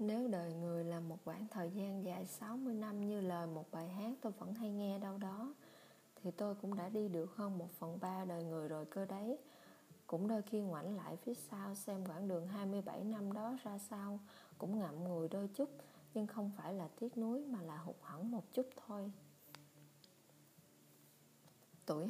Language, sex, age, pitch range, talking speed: Vietnamese, female, 20-39, 175-220 Hz, 195 wpm